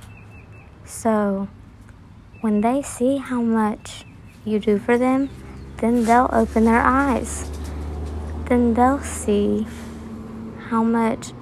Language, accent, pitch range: English, American, 140-235 Hz